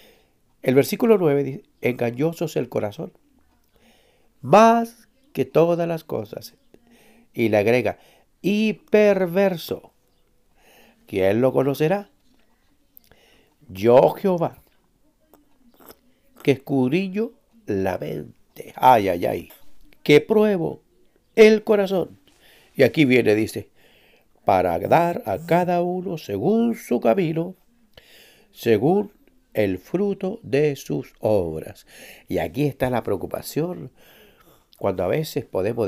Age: 60-79